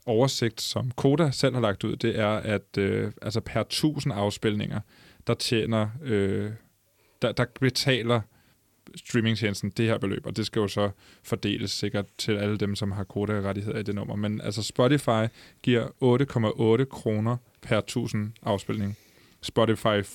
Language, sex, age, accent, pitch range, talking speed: Danish, male, 20-39, native, 105-125 Hz, 150 wpm